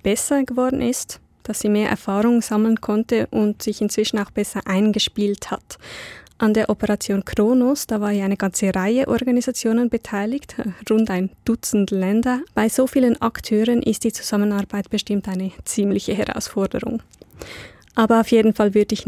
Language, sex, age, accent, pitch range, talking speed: German, female, 20-39, Swiss, 200-230 Hz, 155 wpm